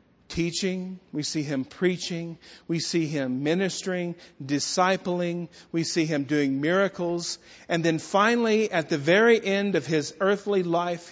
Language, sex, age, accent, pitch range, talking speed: English, male, 40-59, American, 145-185 Hz, 140 wpm